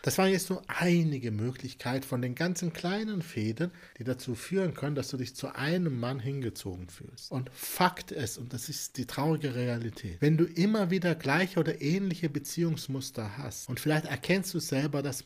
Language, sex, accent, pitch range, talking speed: German, male, German, 120-155 Hz, 185 wpm